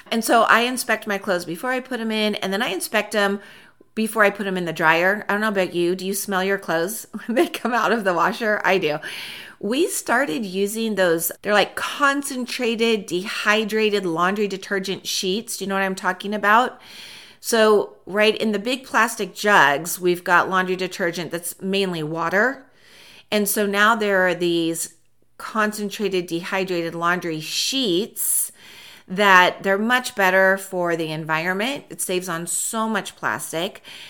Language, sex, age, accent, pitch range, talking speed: English, female, 40-59, American, 185-225 Hz, 170 wpm